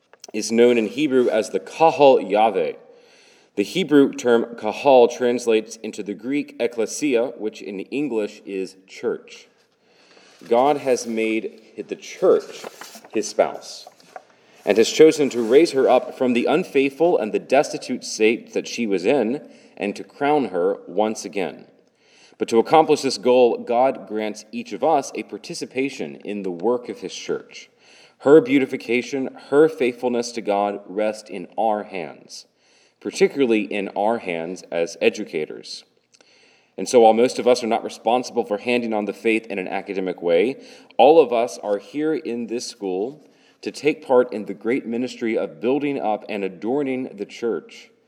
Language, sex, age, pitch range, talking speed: English, male, 30-49, 105-140 Hz, 160 wpm